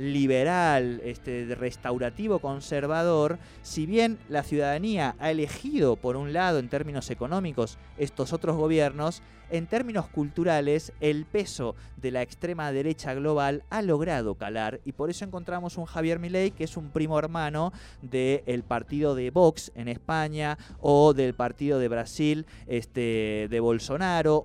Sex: male